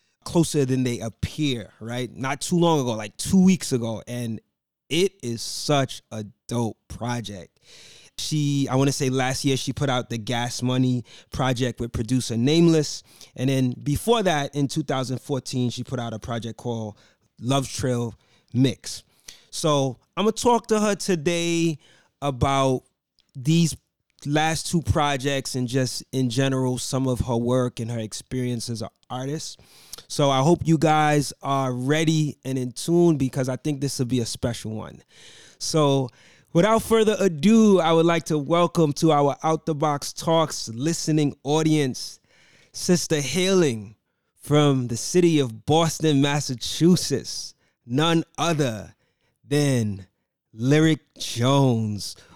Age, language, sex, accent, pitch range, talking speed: 20-39, English, male, American, 120-155 Hz, 145 wpm